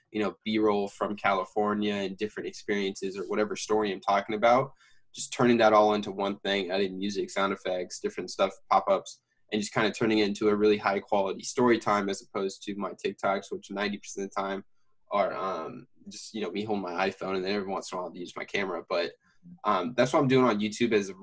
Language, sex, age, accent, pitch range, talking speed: English, male, 10-29, American, 100-110 Hz, 230 wpm